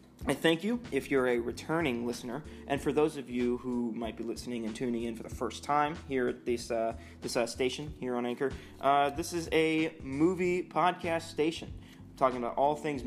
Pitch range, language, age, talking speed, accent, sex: 120-150 Hz, English, 20-39, 210 wpm, American, male